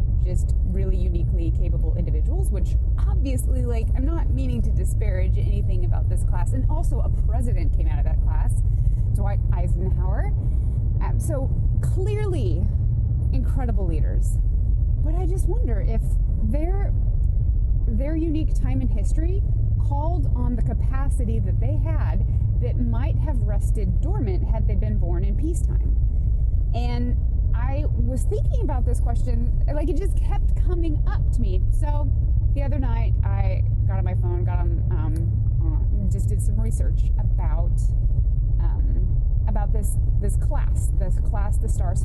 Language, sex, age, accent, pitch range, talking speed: English, female, 30-49, American, 100-110 Hz, 150 wpm